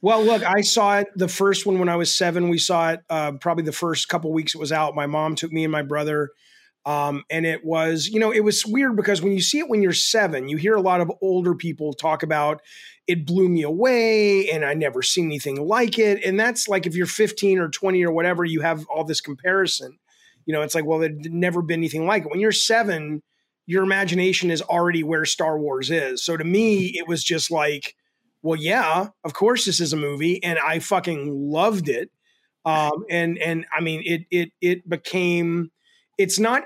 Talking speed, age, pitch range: 225 wpm, 30-49, 155-190 Hz